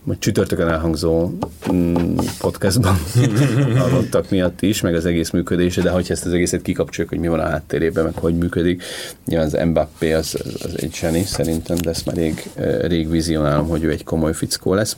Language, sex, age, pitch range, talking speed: Hungarian, male, 30-49, 85-95 Hz, 180 wpm